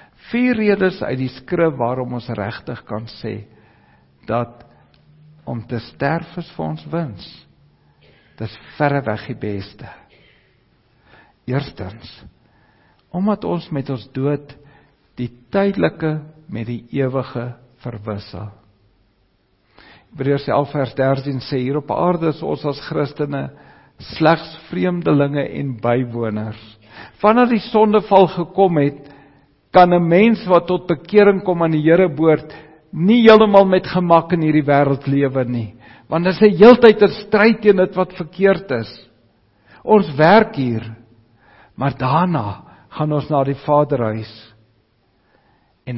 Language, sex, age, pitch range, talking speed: English, male, 60-79, 115-170 Hz, 130 wpm